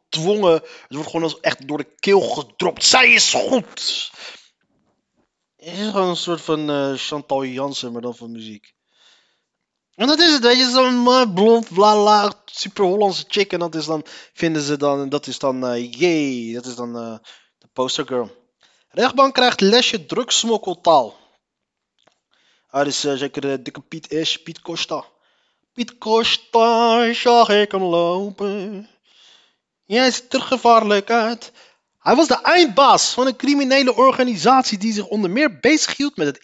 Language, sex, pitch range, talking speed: Dutch, male, 155-235 Hz, 165 wpm